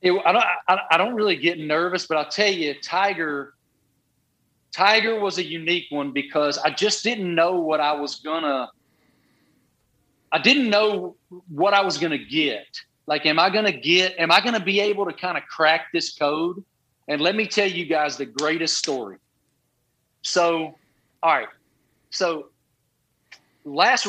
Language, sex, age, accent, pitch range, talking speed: English, male, 40-59, American, 150-200 Hz, 170 wpm